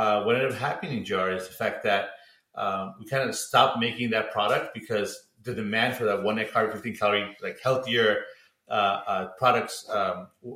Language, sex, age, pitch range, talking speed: English, male, 30-49, 115-140 Hz, 200 wpm